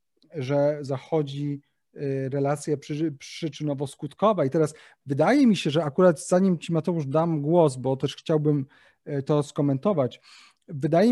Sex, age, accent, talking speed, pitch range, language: male, 30-49, native, 120 wpm, 140-170 Hz, Polish